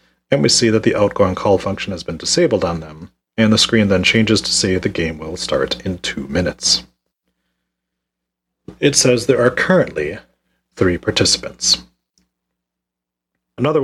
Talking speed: 150 wpm